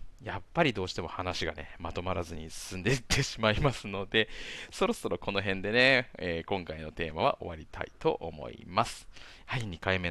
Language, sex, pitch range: Japanese, male, 85-110 Hz